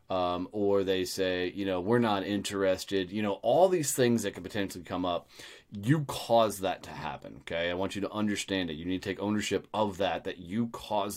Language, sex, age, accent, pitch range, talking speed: English, male, 30-49, American, 100-125 Hz, 220 wpm